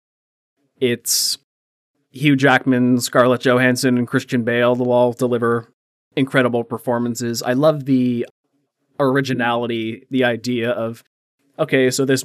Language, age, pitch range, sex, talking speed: English, 20-39, 115-130 Hz, male, 115 wpm